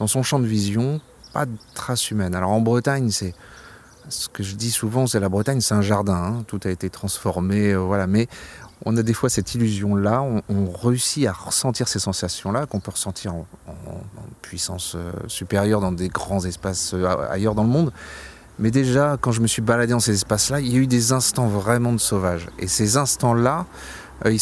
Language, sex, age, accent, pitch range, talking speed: French, male, 30-49, French, 95-115 Hz, 205 wpm